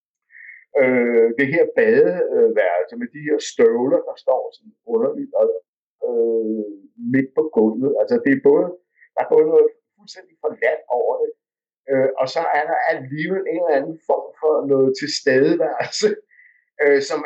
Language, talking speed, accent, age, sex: Danish, 150 wpm, native, 60-79, male